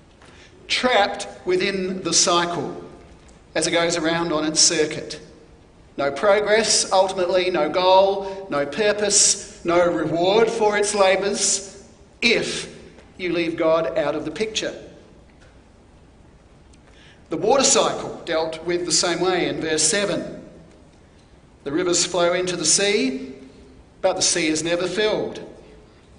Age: 50-69